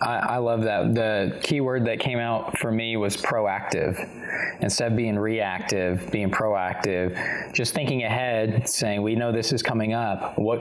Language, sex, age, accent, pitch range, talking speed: English, male, 20-39, American, 110-135 Hz, 165 wpm